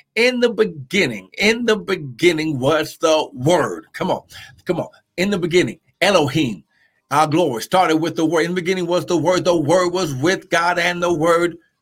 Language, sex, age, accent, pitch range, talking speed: English, male, 50-69, American, 150-185 Hz, 190 wpm